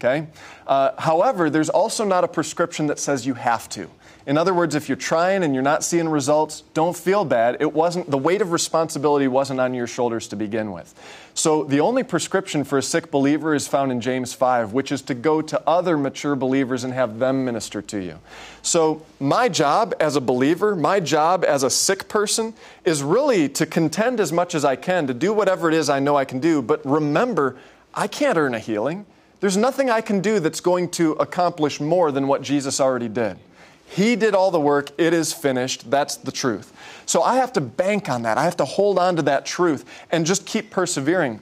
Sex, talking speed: male, 215 wpm